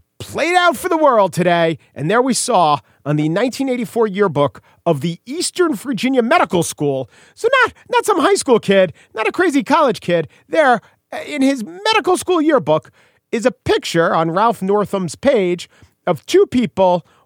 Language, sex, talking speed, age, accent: English, male, 165 wpm, 40-59, American